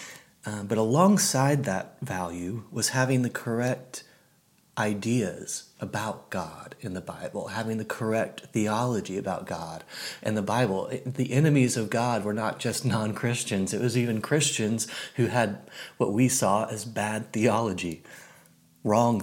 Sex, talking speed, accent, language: male, 135 wpm, American, English